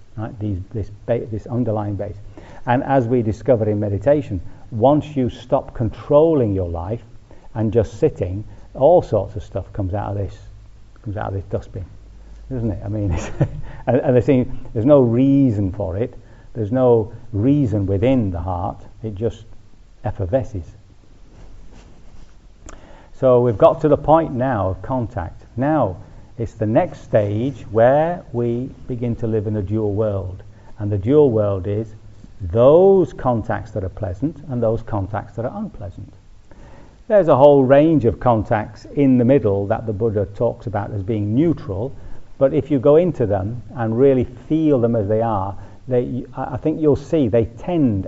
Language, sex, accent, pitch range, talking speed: English, male, British, 100-125 Hz, 165 wpm